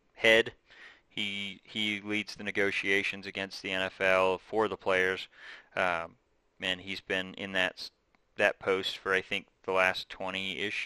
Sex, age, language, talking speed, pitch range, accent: male, 30-49, English, 145 wpm, 95-110 Hz, American